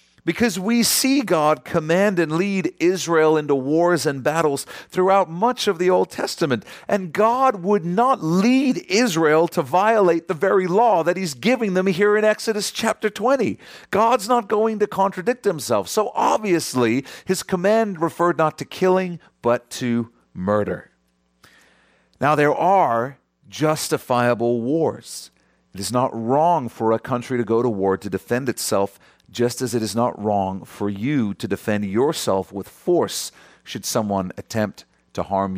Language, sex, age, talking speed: English, male, 40-59, 155 wpm